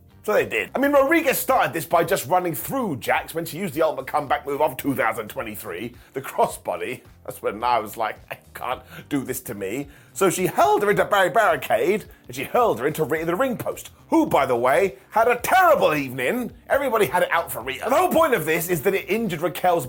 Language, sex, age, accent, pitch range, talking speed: English, male, 30-49, British, 155-245 Hz, 225 wpm